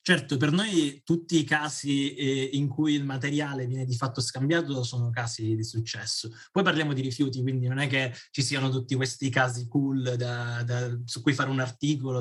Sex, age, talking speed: male, 20-39, 185 wpm